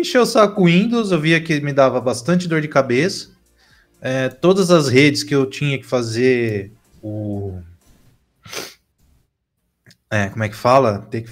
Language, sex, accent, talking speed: Portuguese, male, Brazilian, 160 wpm